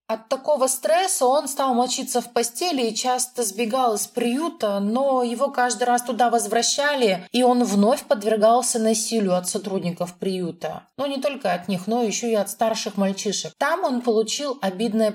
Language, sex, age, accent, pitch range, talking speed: Russian, female, 30-49, native, 195-240 Hz, 170 wpm